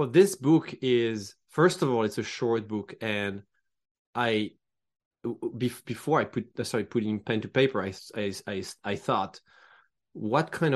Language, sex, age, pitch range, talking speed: English, male, 20-39, 110-125 Hz, 155 wpm